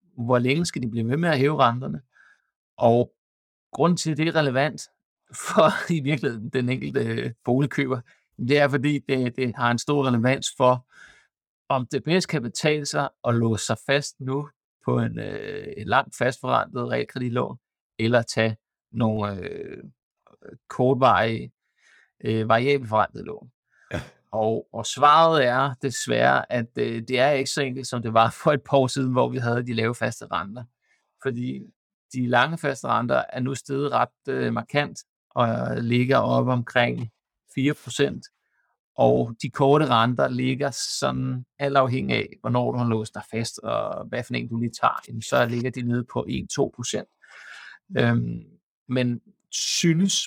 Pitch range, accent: 115-140 Hz, native